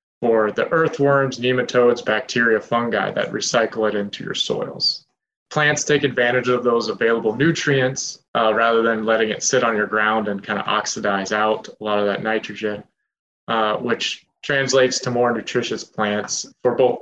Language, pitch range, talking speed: English, 110-125 Hz, 165 wpm